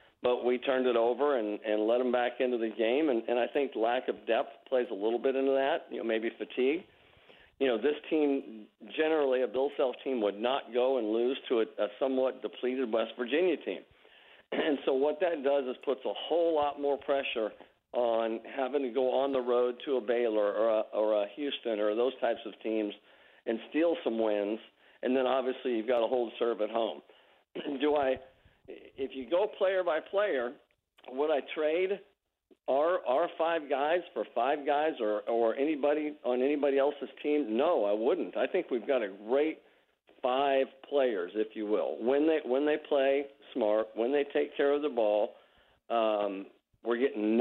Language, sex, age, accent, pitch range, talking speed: English, male, 50-69, American, 115-140 Hz, 195 wpm